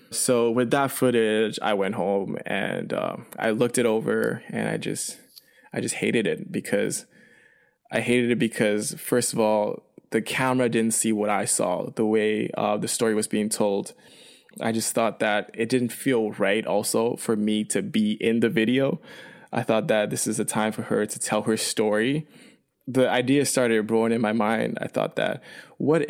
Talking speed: 190 wpm